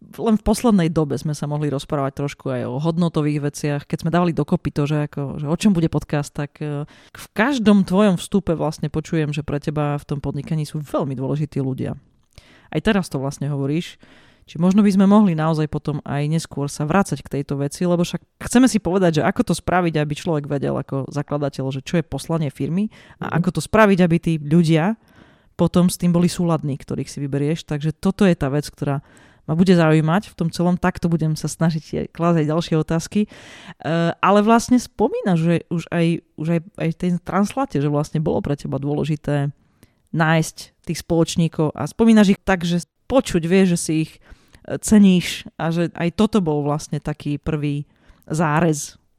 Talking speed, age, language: 190 wpm, 30-49, Slovak